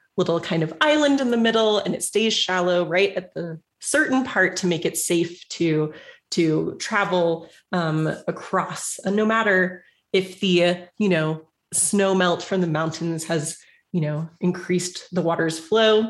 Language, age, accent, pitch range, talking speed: English, 30-49, American, 170-210 Hz, 170 wpm